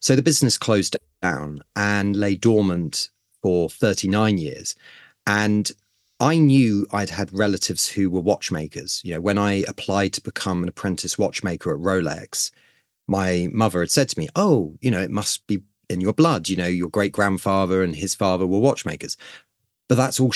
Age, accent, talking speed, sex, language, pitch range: 30-49, British, 175 wpm, male, English, 95-120 Hz